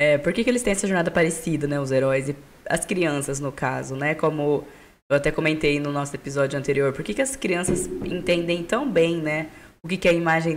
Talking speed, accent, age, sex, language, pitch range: 235 wpm, Brazilian, 10-29, female, Portuguese, 145-180 Hz